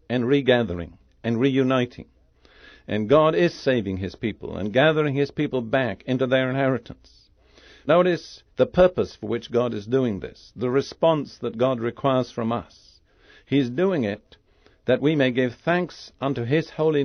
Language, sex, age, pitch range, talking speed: English, male, 60-79, 110-140 Hz, 160 wpm